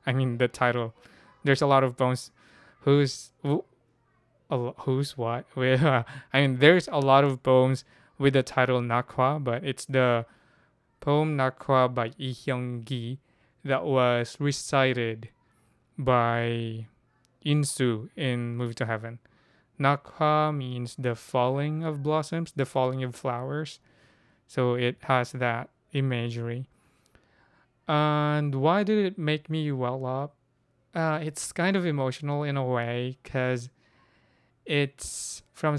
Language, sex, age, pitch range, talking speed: English, male, 20-39, 125-145 Hz, 130 wpm